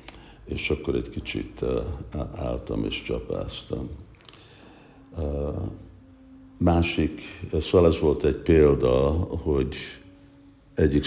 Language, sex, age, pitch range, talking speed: Hungarian, male, 60-79, 70-90 Hz, 80 wpm